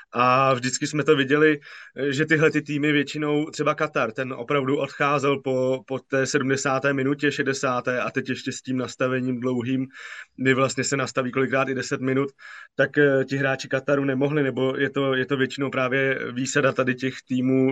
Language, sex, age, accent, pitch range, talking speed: Czech, male, 20-39, native, 130-140 Hz, 175 wpm